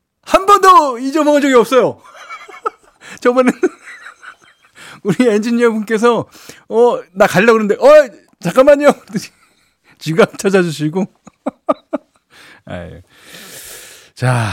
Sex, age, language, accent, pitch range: male, 40-59, Korean, native, 115-165 Hz